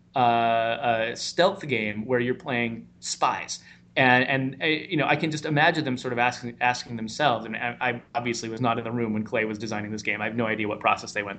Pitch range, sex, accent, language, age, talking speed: 115-145 Hz, male, American, English, 30-49, 240 wpm